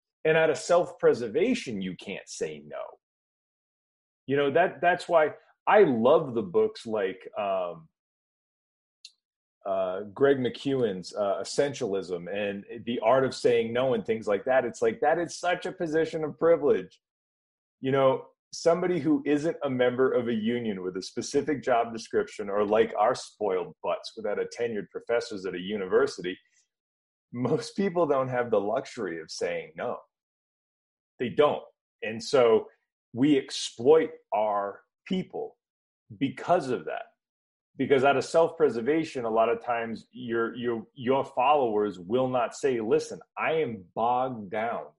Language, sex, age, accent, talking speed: English, male, 30-49, American, 145 wpm